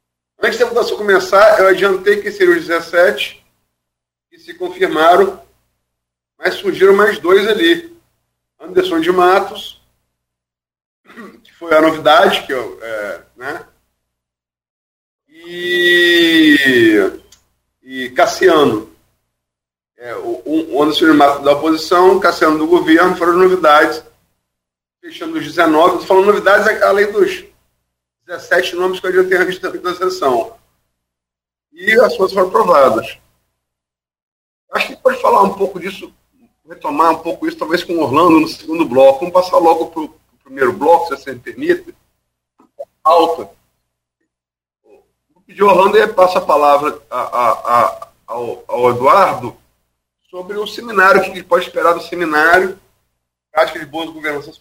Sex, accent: male, Brazilian